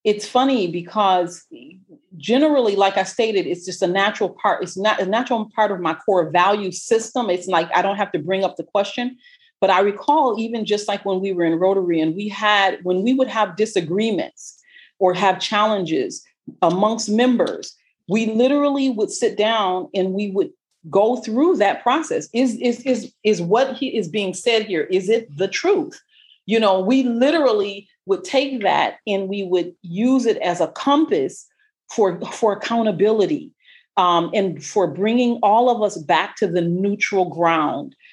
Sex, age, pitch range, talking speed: female, 40-59, 180-235 Hz, 175 wpm